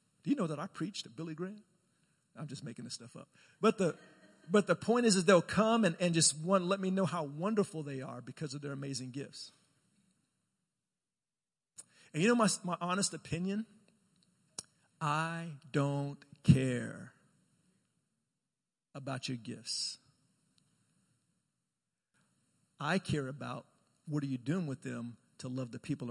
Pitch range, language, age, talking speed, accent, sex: 145-195 Hz, English, 50-69, 150 wpm, American, male